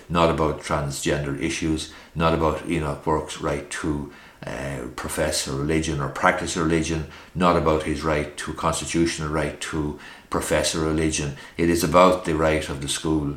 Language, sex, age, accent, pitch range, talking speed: English, male, 60-79, Irish, 70-80 Hz, 155 wpm